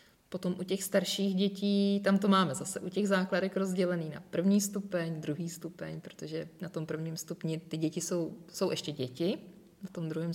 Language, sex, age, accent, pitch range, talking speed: Czech, female, 20-39, native, 170-200 Hz, 185 wpm